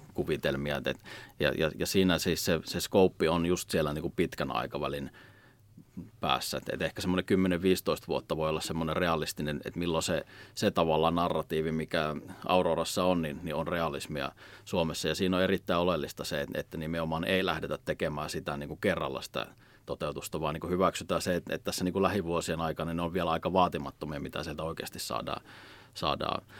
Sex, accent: male, native